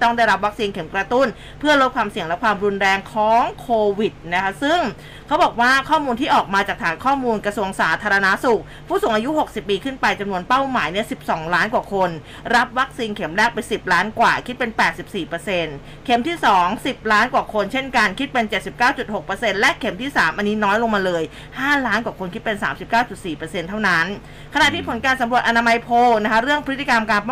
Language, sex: Thai, female